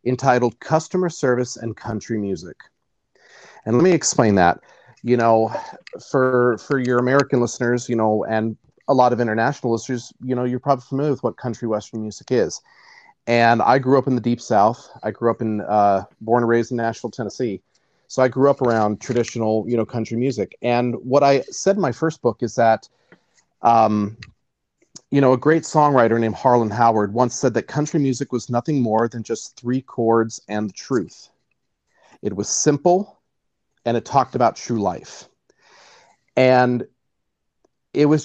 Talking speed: 175 wpm